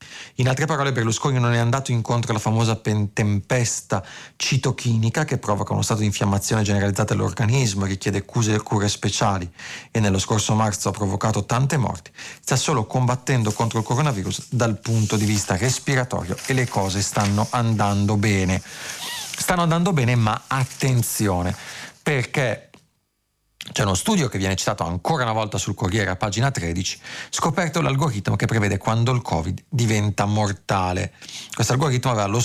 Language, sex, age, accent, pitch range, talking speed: Italian, male, 40-59, native, 100-125 Hz, 150 wpm